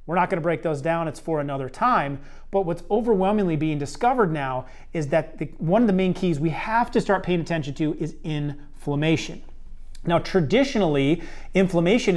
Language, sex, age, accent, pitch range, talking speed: English, male, 30-49, American, 150-195 Hz, 175 wpm